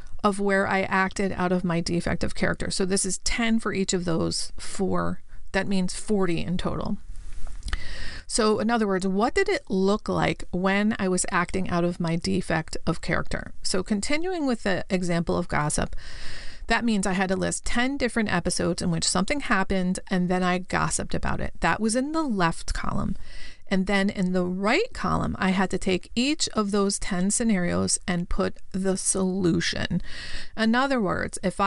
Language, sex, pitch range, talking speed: English, female, 180-215 Hz, 185 wpm